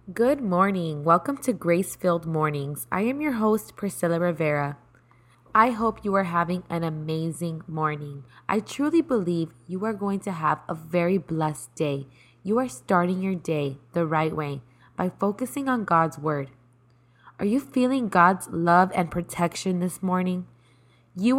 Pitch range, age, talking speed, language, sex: 150-195 Hz, 20-39, 155 wpm, English, female